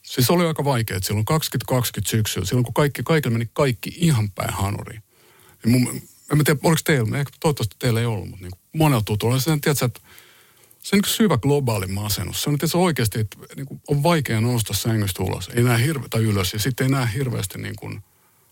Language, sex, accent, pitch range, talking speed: Finnish, male, native, 95-125 Hz, 205 wpm